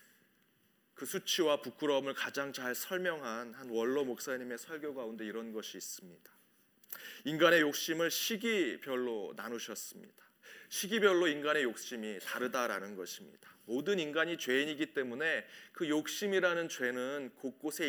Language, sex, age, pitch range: Korean, male, 30-49, 125-185 Hz